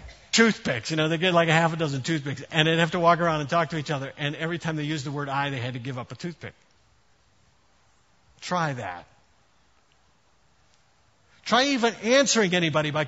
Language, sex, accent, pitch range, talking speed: English, male, American, 120-175 Hz, 200 wpm